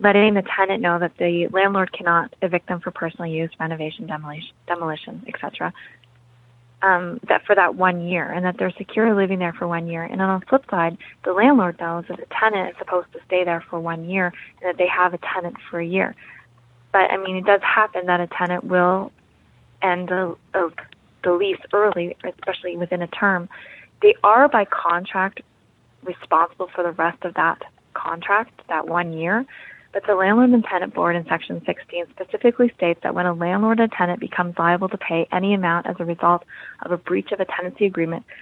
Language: English